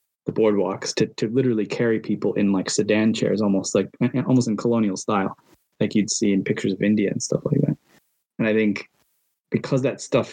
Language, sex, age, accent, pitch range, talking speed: English, male, 20-39, American, 100-120 Hz, 200 wpm